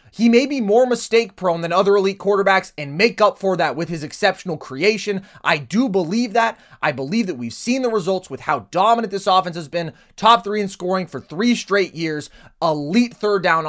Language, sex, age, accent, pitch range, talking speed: English, male, 20-39, American, 165-230 Hz, 205 wpm